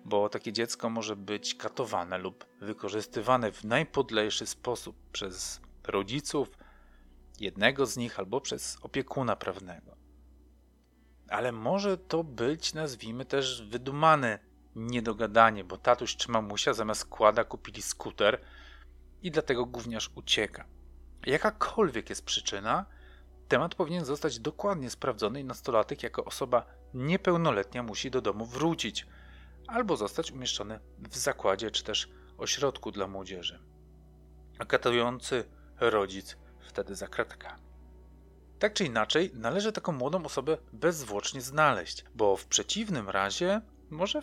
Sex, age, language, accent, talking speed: male, 40-59, Polish, native, 115 wpm